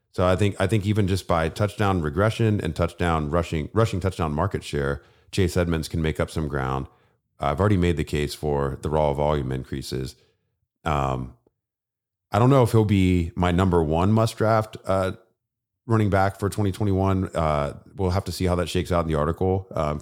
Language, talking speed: English, 200 wpm